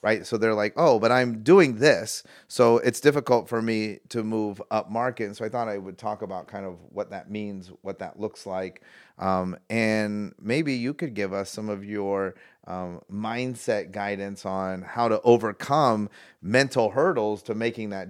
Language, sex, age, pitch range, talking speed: English, male, 30-49, 100-120 Hz, 190 wpm